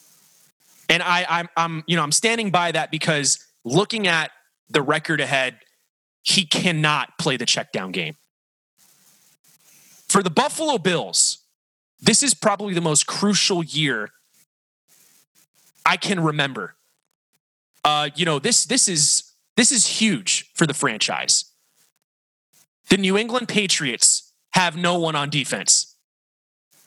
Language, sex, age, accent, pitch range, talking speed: English, male, 20-39, American, 145-190 Hz, 125 wpm